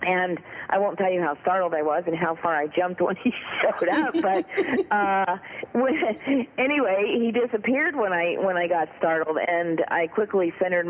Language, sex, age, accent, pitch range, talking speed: English, female, 40-59, American, 165-190 Hz, 185 wpm